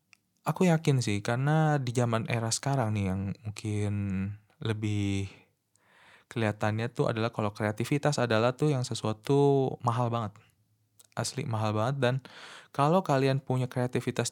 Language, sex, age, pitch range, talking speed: Indonesian, male, 20-39, 105-135 Hz, 130 wpm